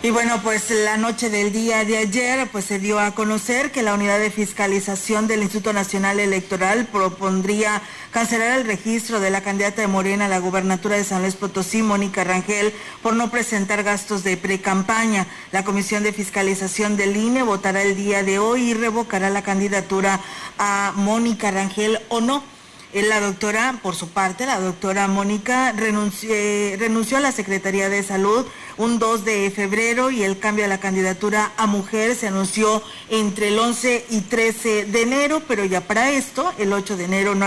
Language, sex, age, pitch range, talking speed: Spanish, female, 40-59, 195-230 Hz, 180 wpm